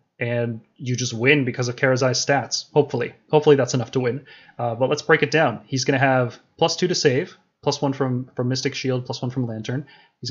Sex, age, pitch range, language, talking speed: male, 20-39, 120-140 Hz, English, 225 wpm